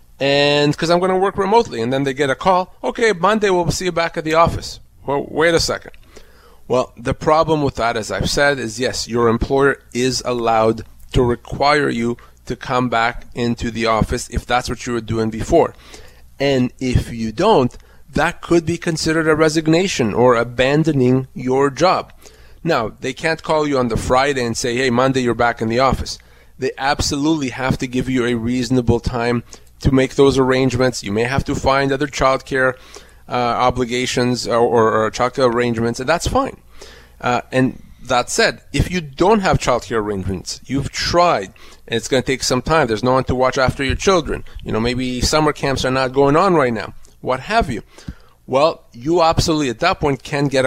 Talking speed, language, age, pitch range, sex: 200 wpm, English, 30-49, 120-145 Hz, male